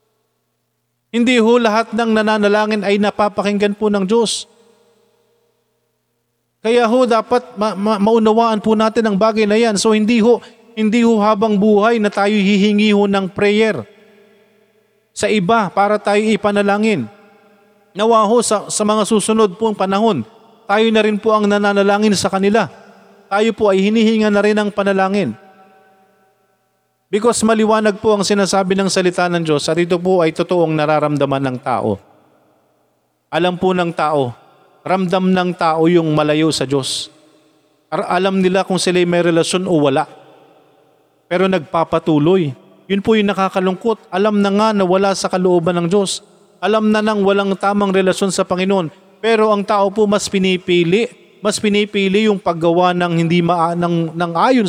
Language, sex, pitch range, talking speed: Filipino, male, 180-215 Hz, 150 wpm